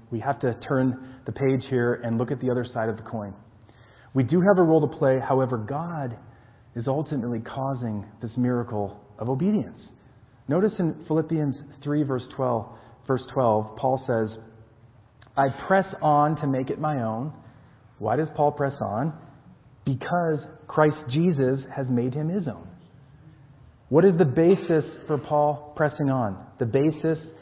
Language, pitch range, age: English, 115-145 Hz, 40-59